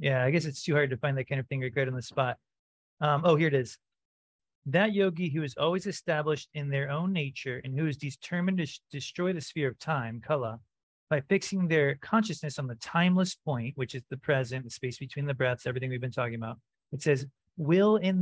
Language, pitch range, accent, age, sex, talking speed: English, 125-170 Hz, American, 30-49, male, 225 wpm